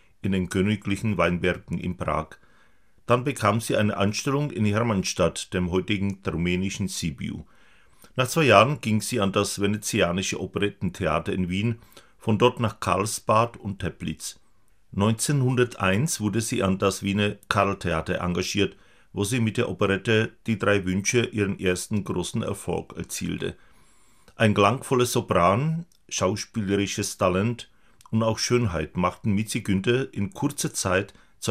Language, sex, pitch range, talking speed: Czech, male, 95-115 Hz, 135 wpm